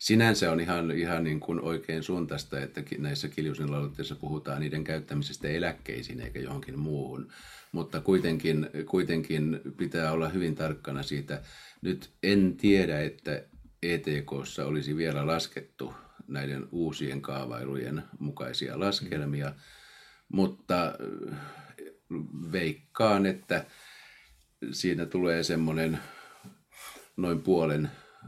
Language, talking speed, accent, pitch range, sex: Finnish, 100 wpm, native, 75-85 Hz, male